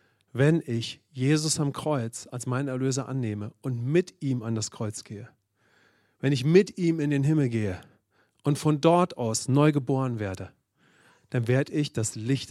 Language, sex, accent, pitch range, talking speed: English, male, German, 115-145 Hz, 175 wpm